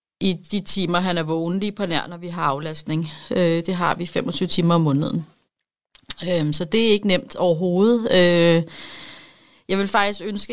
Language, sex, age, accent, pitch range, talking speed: Danish, female, 30-49, native, 175-200 Hz, 170 wpm